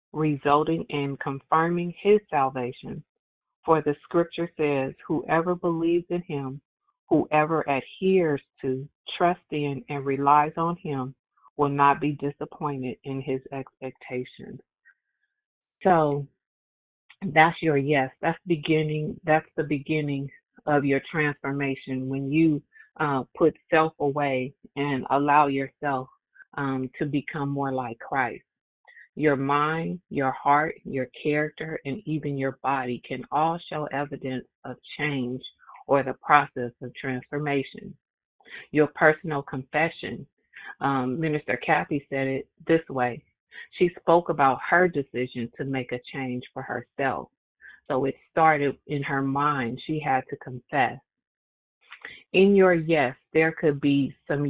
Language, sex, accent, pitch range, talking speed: English, female, American, 135-155 Hz, 125 wpm